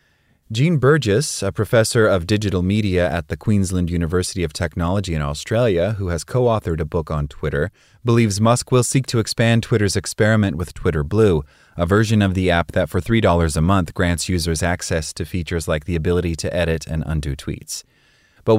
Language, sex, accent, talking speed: English, male, American, 185 wpm